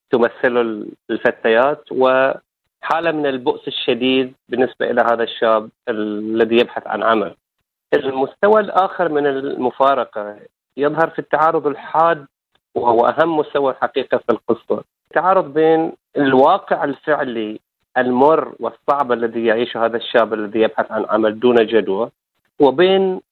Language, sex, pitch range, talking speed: Arabic, male, 115-150 Hz, 115 wpm